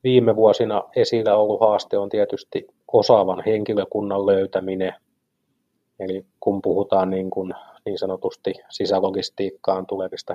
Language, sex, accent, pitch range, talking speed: English, male, Finnish, 95-125 Hz, 110 wpm